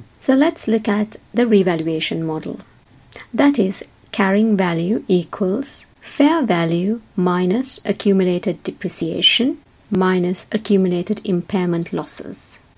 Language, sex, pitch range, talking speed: English, female, 175-220 Hz, 100 wpm